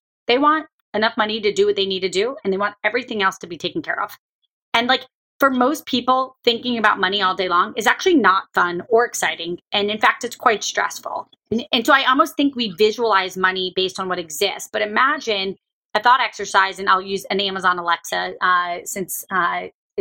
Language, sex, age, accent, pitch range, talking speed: English, female, 30-49, American, 185-235 Hz, 215 wpm